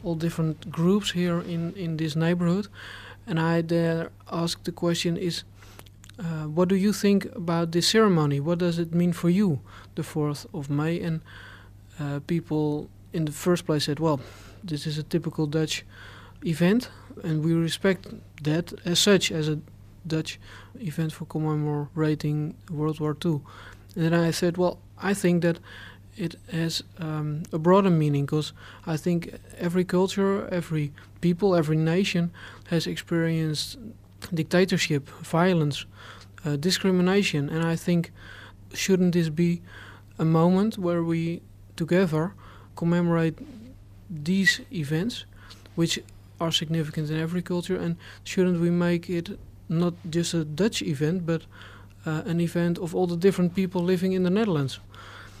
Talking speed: 145 wpm